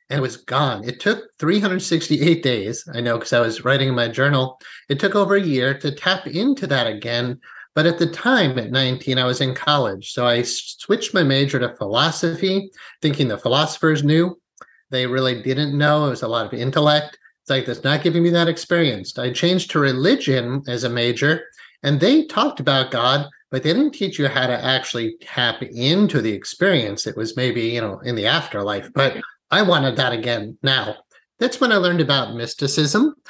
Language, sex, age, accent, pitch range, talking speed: English, male, 30-49, American, 125-160 Hz, 195 wpm